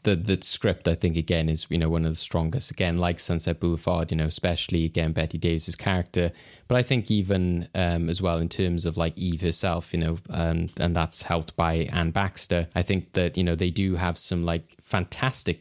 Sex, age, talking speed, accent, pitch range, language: male, 20-39, 220 wpm, British, 85-95 Hz, English